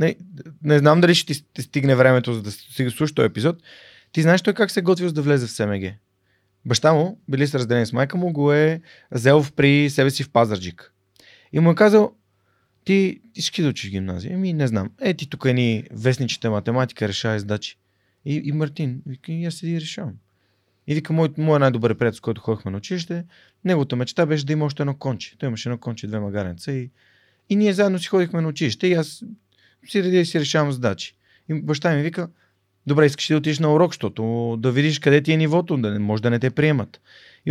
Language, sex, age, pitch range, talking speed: Bulgarian, male, 30-49, 110-160 Hz, 215 wpm